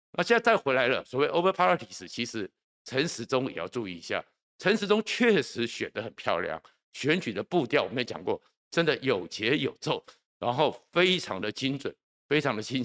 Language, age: Chinese, 50-69